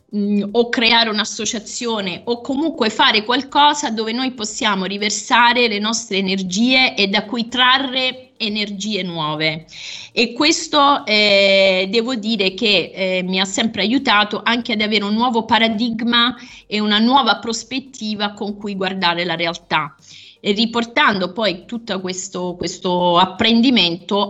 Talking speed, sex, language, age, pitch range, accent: 130 wpm, female, Italian, 30-49, 185-235 Hz, native